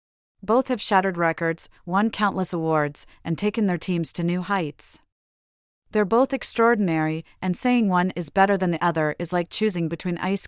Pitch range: 165-205 Hz